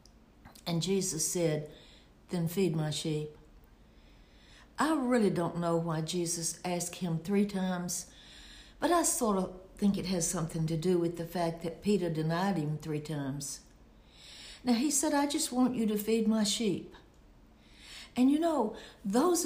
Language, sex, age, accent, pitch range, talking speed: English, female, 60-79, American, 165-225 Hz, 155 wpm